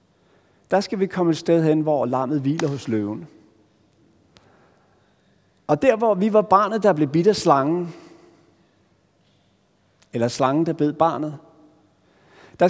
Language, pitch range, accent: Danish, 125-175 Hz, native